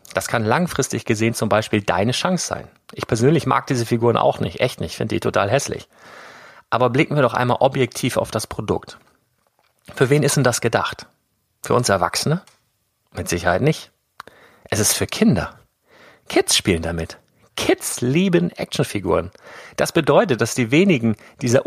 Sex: male